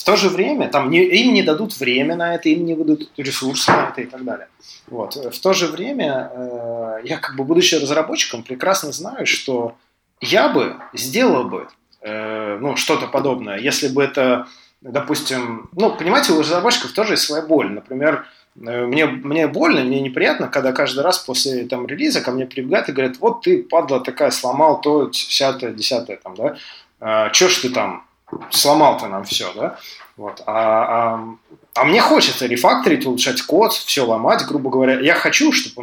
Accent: native